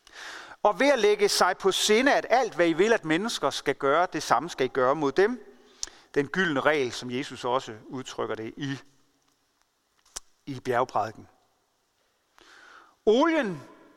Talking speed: 150 wpm